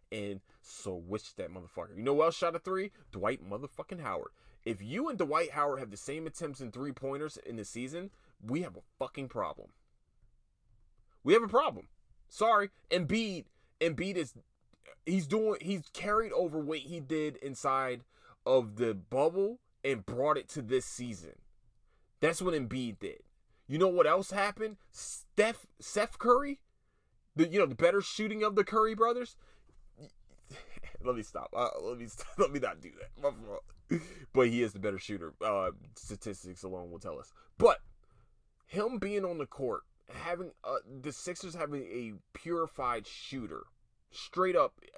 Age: 30-49